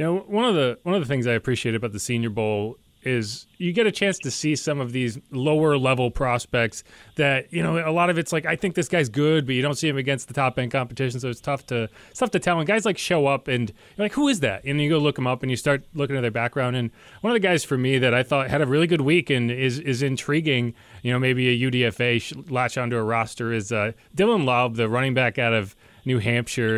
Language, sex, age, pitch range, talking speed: English, male, 30-49, 120-155 Hz, 270 wpm